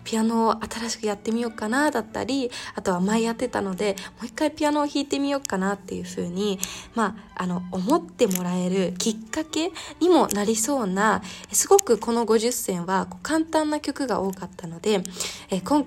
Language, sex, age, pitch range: Japanese, female, 20-39, 195-255 Hz